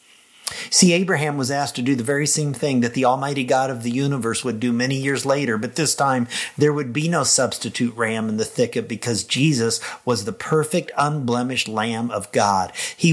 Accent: American